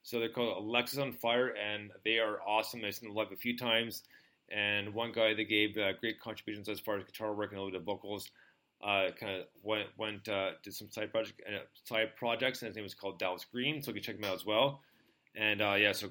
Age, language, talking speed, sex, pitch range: 30-49, English, 255 wpm, male, 105-125 Hz